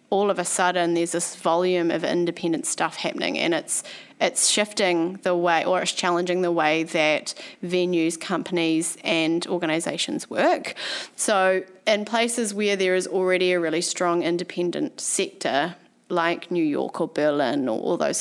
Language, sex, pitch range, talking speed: English, female, 170-215 Hz, 160 wpm